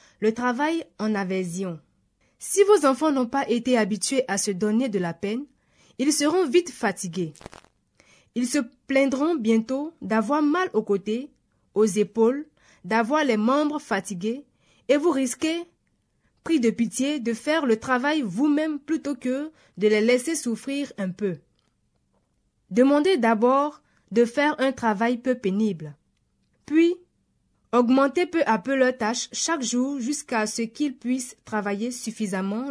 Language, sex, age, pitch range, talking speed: French, female, 20-39, 215-295 Hz, 145 wpm